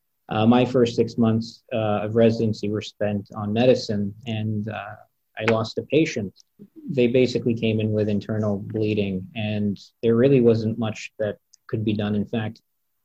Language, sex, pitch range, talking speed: English, male, 105-115 Hz, 165 wpm